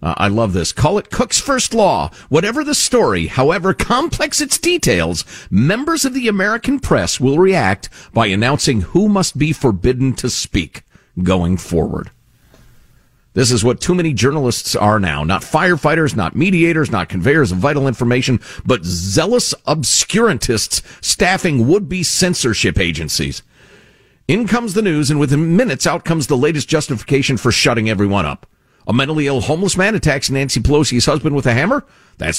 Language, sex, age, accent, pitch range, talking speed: English, male, 50-69, American, 110-155 Hz, 160 wpm